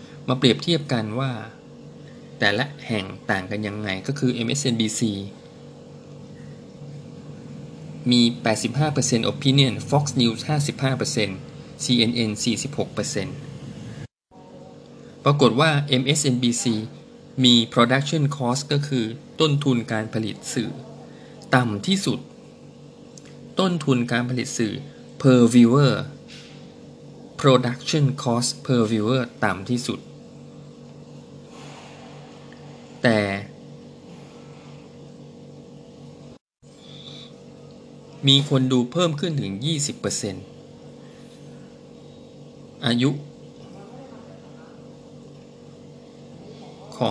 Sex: male